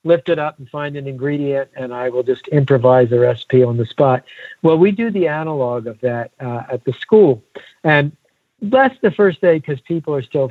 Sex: male